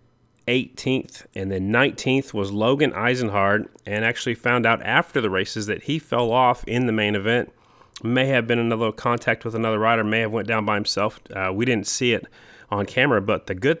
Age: 30-49